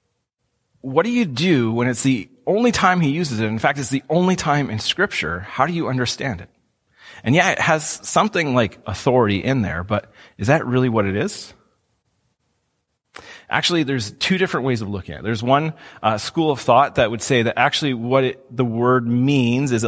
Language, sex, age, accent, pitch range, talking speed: English, male, 30-49, American, 115-135 Hz, 200 wpm